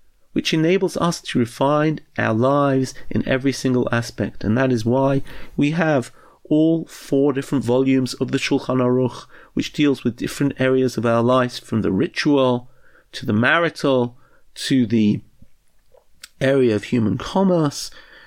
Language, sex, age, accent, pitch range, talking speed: English, male, 40-59, British, 115-145 Hz, 150 wpm